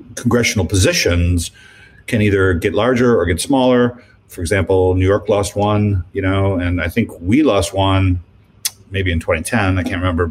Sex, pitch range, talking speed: male, 95-110 Hz, 170 wpm